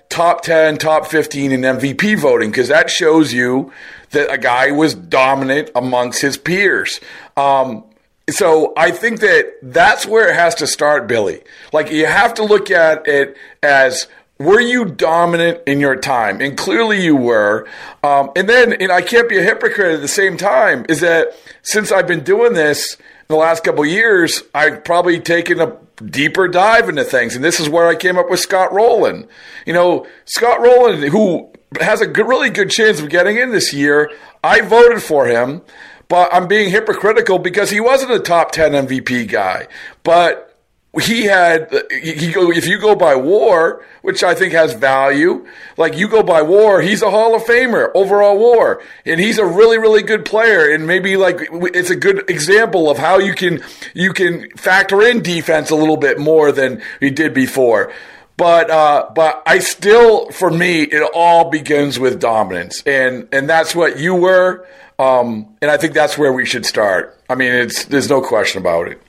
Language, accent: English, American